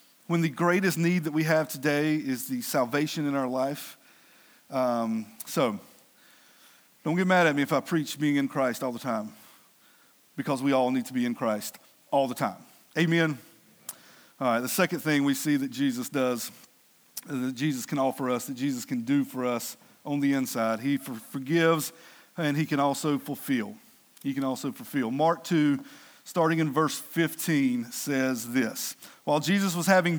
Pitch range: 145-215 Hz